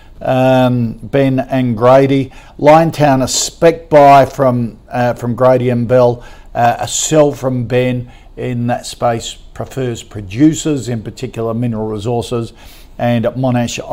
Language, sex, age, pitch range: English, male, 50-69, 115-135 Hz